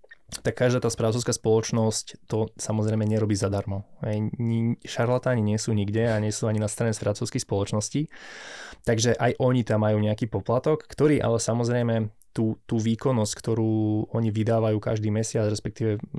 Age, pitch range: 20-39, 105-115 Hz